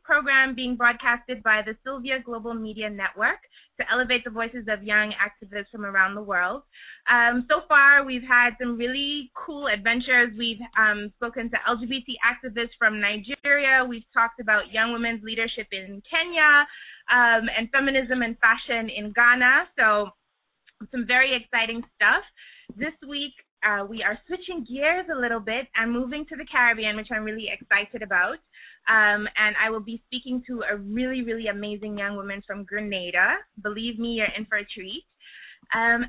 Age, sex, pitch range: 20-39, female, 215-260 Hz